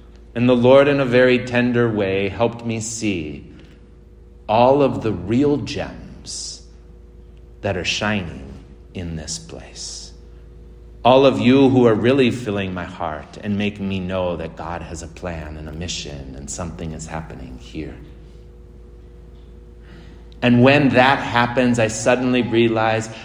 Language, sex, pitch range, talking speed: English, male, 85-120 Hz, 140 wpm